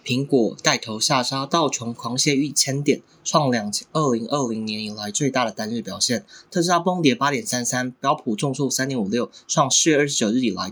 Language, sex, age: Chinese, male, 20-39